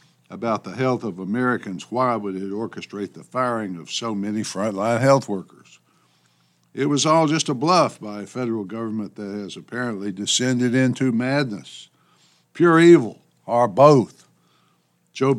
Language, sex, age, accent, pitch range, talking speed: English, male, 60-79, American, 105-130 Hz, 150 wpm